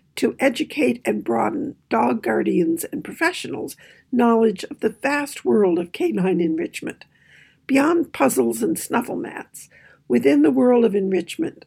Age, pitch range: 60-79, 195-320 Hz